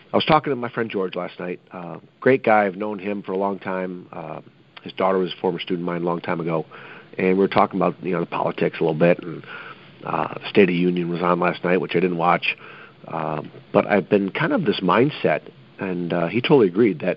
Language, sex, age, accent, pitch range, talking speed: English, male, 50-69, American, 95-125 Hz, 250 wpm